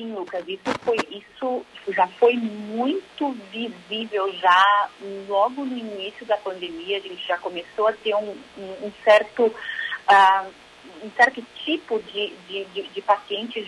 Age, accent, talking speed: 40-59, Brazilian, 155 wpm